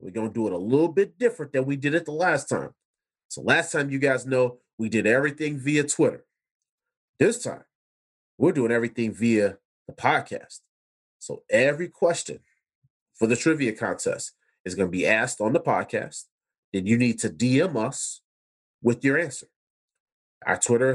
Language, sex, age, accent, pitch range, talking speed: English, male, 30-49, American, 120-150 Hz, 170 wpm